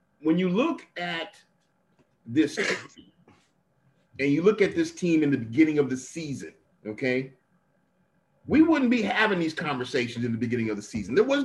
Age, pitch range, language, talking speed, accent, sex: 40-59, 160-245 Hz, English, 175 wpm, American, male